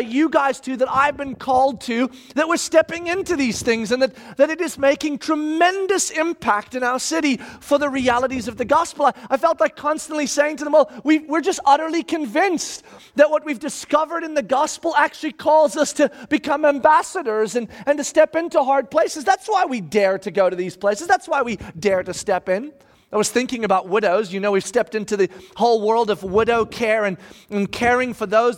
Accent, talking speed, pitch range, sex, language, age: American, 210 wpm, 230-310 Hz, male, English, 30-49